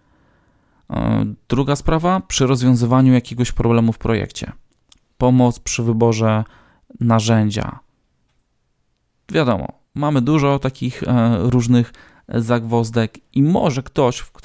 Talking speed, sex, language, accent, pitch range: 85 wpm, male, Polish, native, 110-130 Hz